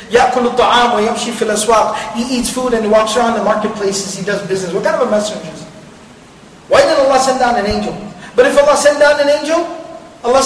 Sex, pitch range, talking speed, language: male, 205-265 Hz, 225 wpm, Malay